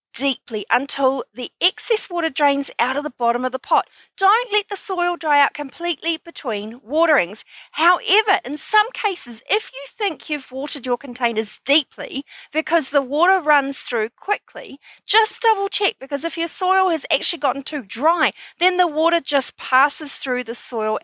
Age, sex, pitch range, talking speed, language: 40-59, female, 240-345 Hz, 170 wpm, English